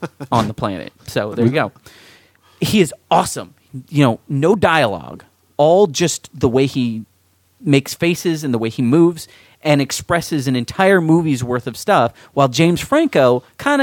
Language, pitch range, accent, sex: English, 120-150 Hz, American, male